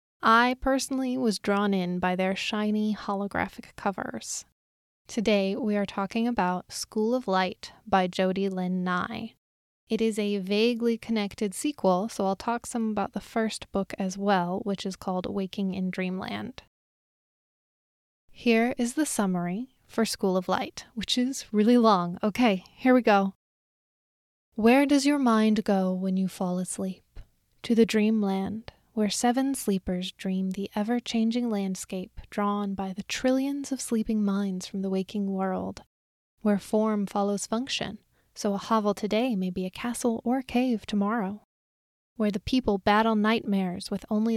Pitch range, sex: 195-230 Hz, female